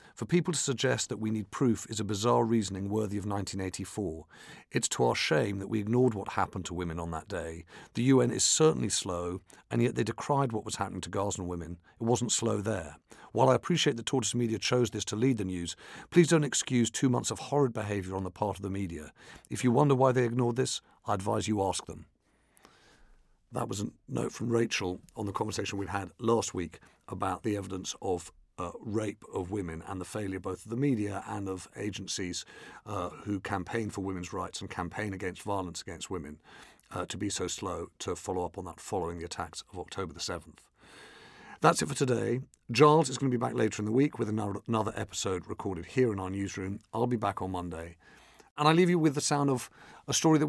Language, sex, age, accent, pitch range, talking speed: English, male, 50-69, British, 95-125 Hz, 220 wpm